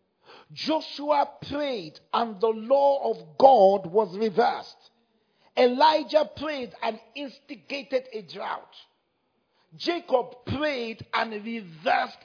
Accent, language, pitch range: Nigerian, English, 225-300 Hz